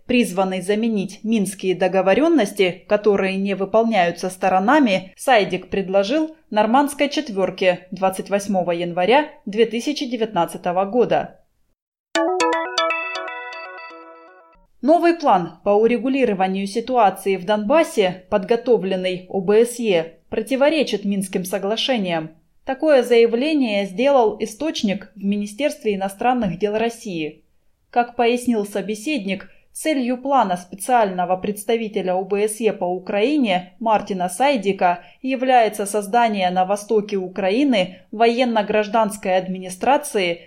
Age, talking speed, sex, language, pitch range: 20-39, 85 wpm, female, Russian, 190-245 Hz